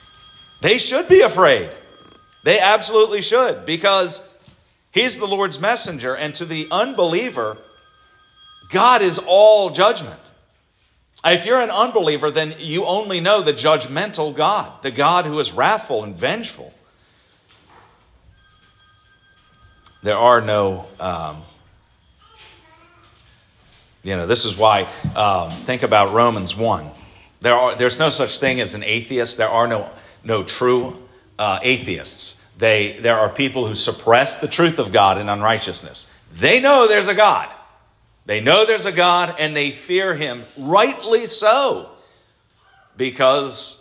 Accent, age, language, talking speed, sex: American, 40-59, English, 135 wpm, male